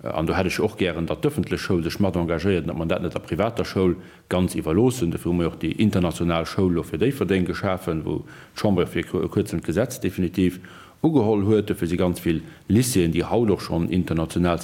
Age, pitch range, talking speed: 40-59, 90-110 Hz, 200 wpm